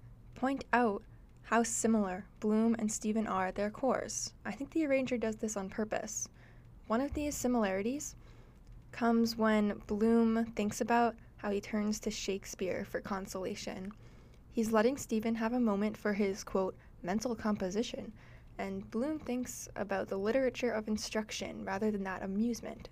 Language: English